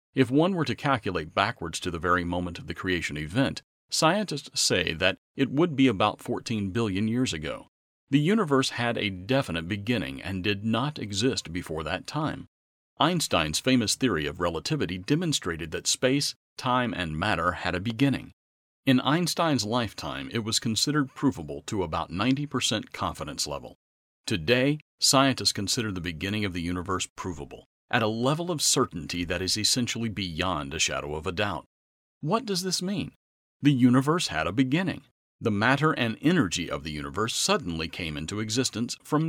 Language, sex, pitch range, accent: English, male, 90-135 Hz, American